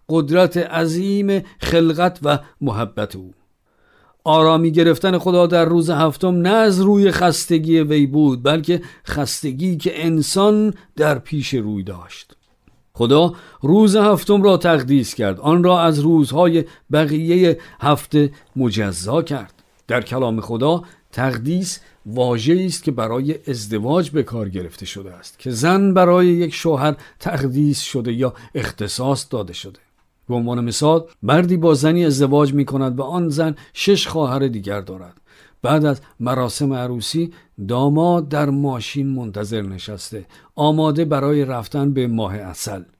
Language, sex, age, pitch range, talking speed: Persian, male, 50-69, 120-165 Hz, 135 wpm